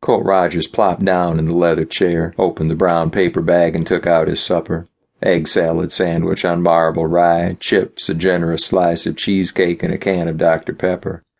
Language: English